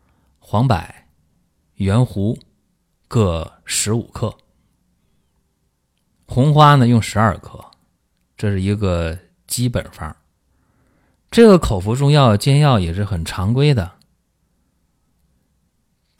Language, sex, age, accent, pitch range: Chinese, male, 30-49, native, 90-125 Hz